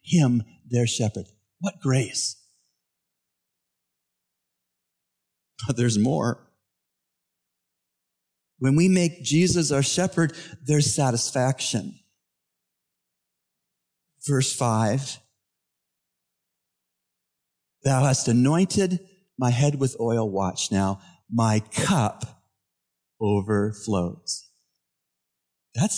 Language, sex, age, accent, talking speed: English, male, 50-69, American, 70 wpm